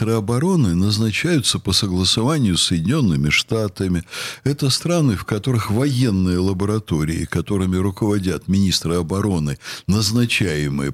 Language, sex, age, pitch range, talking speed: Russian, male, 60-79, 95-130 Hz, 105 wpm